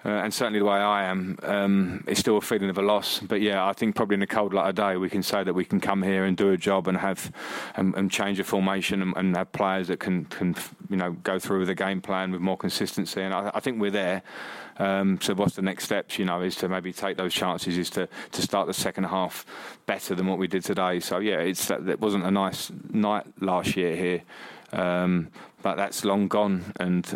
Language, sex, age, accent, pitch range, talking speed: English, male, 20-39, British, 90-95 Hz, 250 wpm